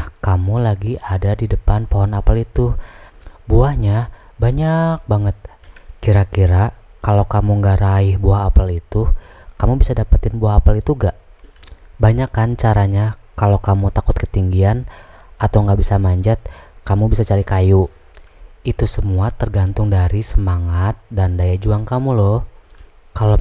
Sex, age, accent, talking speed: female, 20-39, Indonesian, 130 wpm